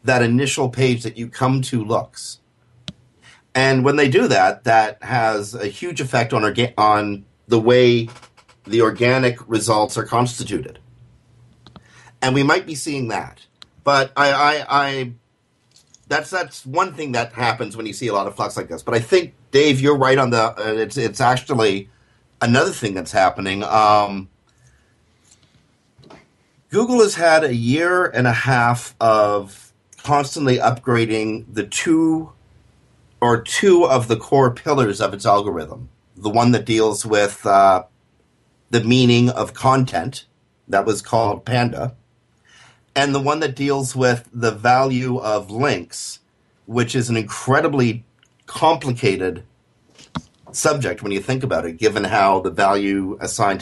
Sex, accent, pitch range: male, American, 110-130 Hz